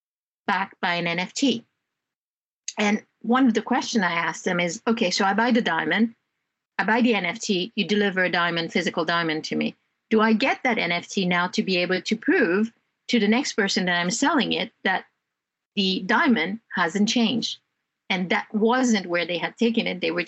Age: 50-69